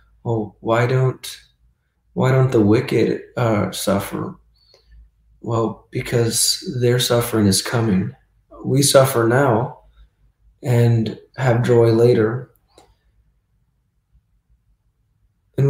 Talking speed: 90 wpm